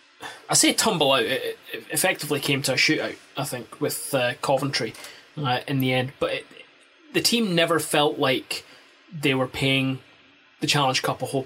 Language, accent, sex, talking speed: English, British, male, 175 wpm